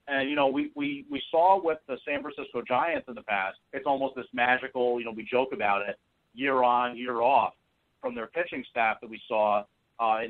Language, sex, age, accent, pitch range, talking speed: English, male, 40-59, American, 115-140 Hz, 215 wpm